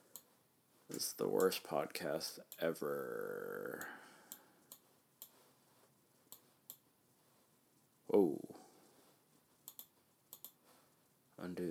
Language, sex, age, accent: English, male, 30-49, American